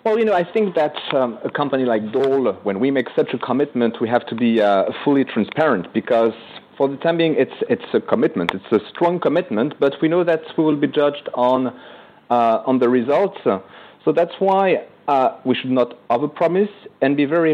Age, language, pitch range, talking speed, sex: 40-59, English, 115-155 Hz, 215 wpm, male